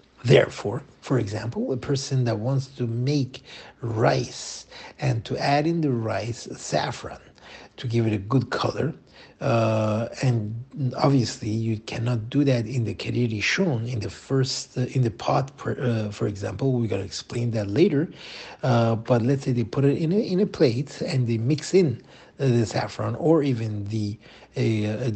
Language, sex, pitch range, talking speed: English, male, 110-140 Hz, 170 wpm